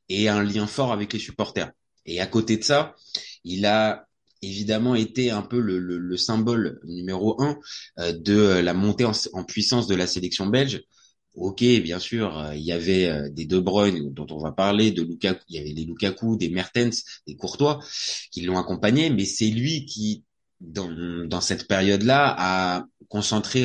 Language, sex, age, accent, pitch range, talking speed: French, male, 20-39, French, 90-110 Hz, 185 wpm